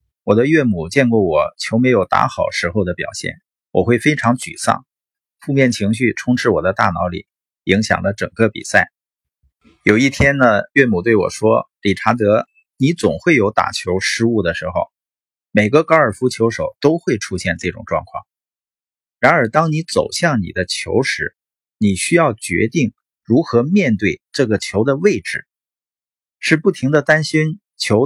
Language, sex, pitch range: Chinese, male, 105-155 Hz